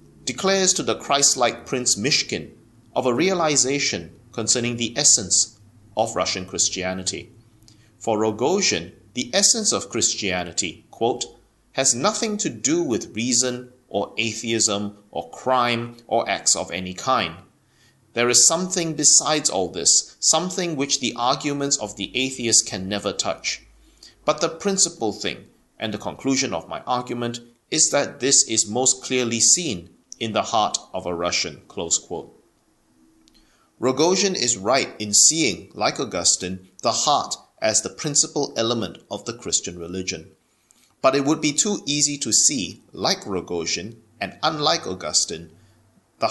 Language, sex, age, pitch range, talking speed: English, male, 30-49, 105-145 Hz, 140 wpm